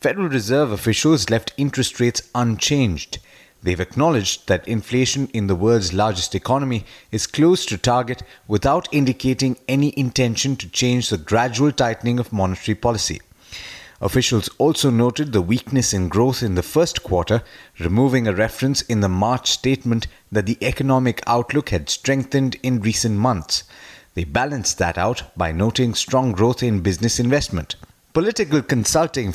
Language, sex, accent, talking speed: English, male, Indian, 145 wpm